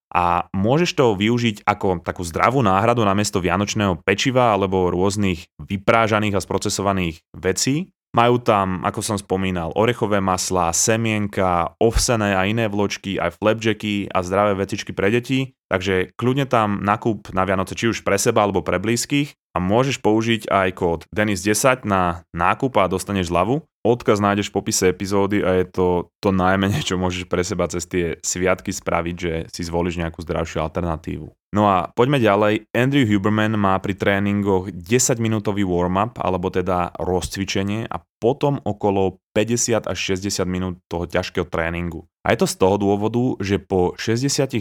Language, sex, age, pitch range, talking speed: Slovak, male, 20-39, 90-110 Hz, 160 wpm